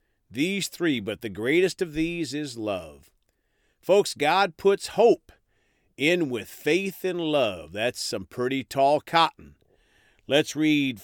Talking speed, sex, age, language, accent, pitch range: 135 wpm, male, 40-59, English, American, 115-175 Hz